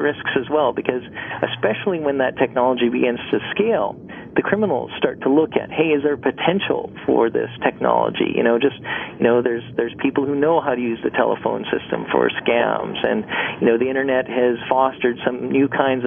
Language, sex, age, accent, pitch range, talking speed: English, male, 40-59, American, 120-140 Hz, 195 wpm